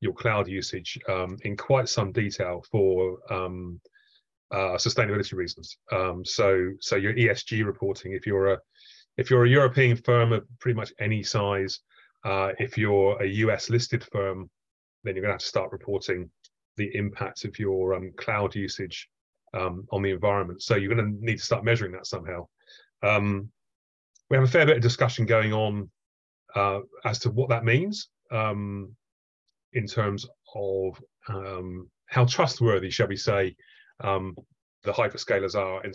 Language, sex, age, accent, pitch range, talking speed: English, male, 30-49, British, 95-115 Hz, 160 wpm